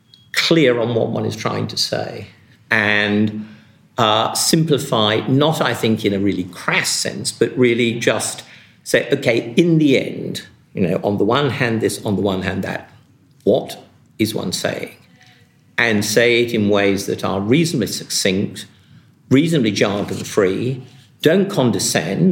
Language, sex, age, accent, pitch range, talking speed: English, male, 50-69, British, 105-130 Hz, 155 wpm